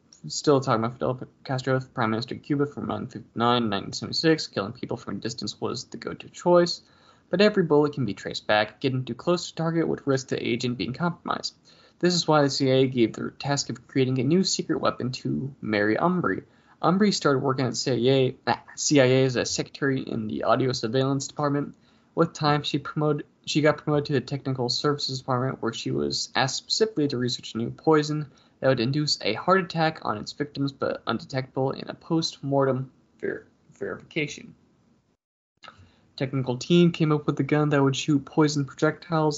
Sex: male